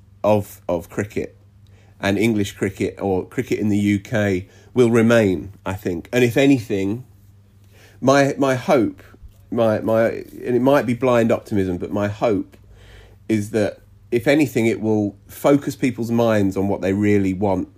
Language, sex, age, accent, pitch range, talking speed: English, male, 30-49, British, 100-125 Hz, 155 wpm